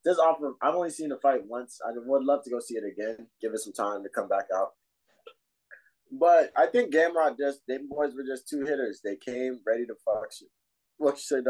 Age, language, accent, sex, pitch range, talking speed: 20-39, English, American, male, 115-145 Hz, 220 wpm